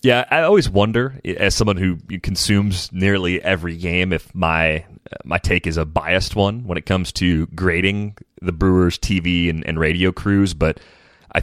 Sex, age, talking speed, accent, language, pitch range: male, 30-49, 175 wpm, American, English, 80-100 Hz